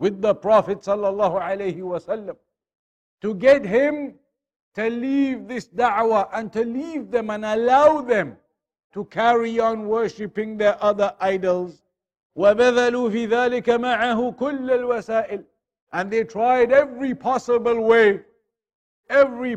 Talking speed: 95 wpm